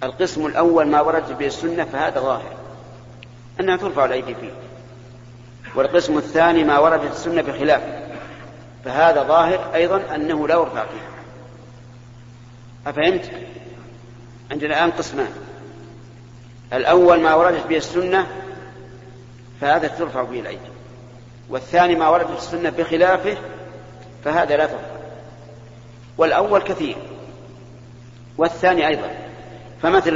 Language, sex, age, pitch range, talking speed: Arabic, male, 50-69, 120-155 Hz, 100 wpm